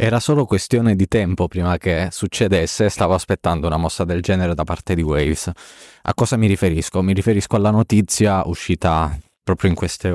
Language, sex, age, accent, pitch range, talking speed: Italian, male, 20-39, native, 85-100 Hz, 180 wpm